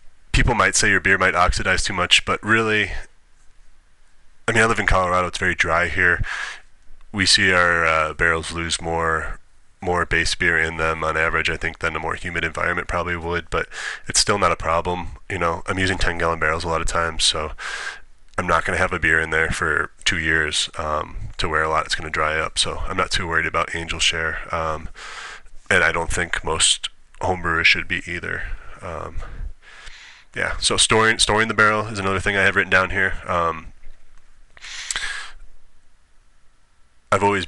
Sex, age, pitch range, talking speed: male, 20-39, 80-95 Hz, 190 wpm